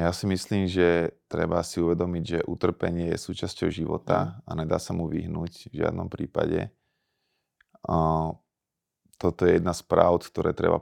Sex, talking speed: male, 150 wpm